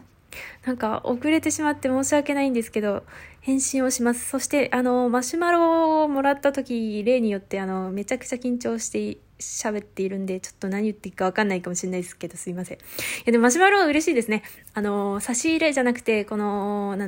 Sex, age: female, 20-39